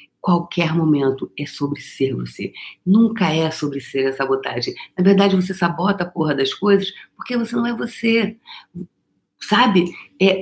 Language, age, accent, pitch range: Portuguese, 50-69, Brazilian, 175-205 Hz